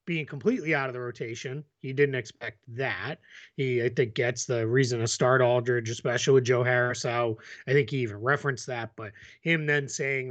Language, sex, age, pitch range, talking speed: English, male, 30-49, 120-150 Hz, 200 wpm